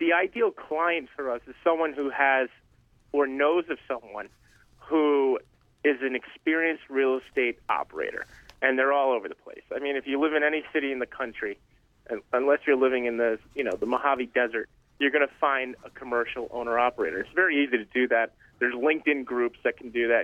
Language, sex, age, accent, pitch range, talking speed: English, male, 30-49, American, 120-150 Hz, 200 wpm